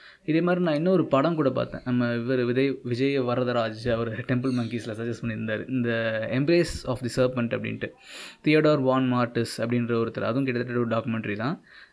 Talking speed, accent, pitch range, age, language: 165 wpm, native, 120-140 Hz, 20-39, Tamil